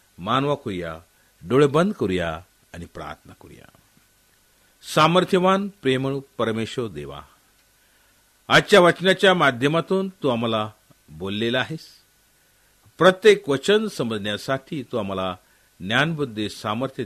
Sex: male